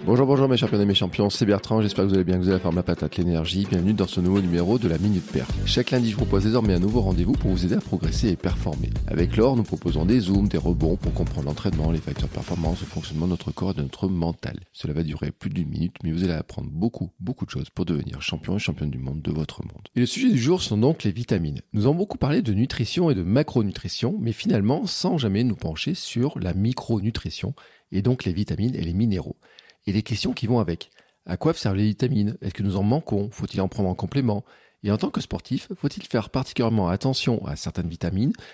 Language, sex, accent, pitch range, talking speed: French, male, French, 95-125 Hz, 250 wpm